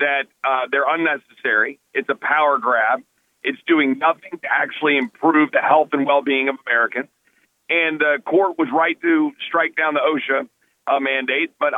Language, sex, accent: English, male, American